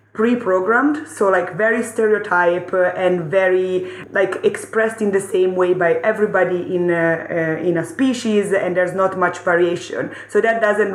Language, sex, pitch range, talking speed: English, female, 180-210 Hz, 160 wpm